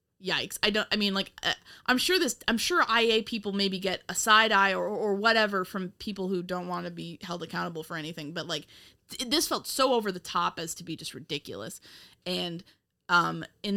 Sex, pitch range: female, 165-200 Hz